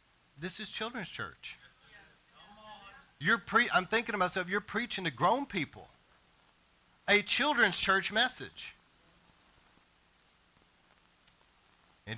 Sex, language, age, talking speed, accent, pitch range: male, English, 40-59, 100 wpm, American, 135-180 Hz